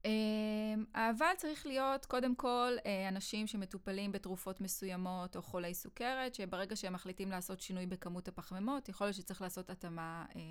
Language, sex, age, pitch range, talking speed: Hebrew, female, 20-39, 180-235 Hz, 155 wpm